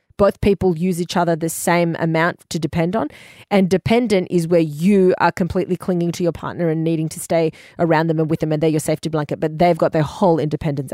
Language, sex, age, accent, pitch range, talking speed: English, female, 30-49, Australian, 160-190 Hz, 230 wpm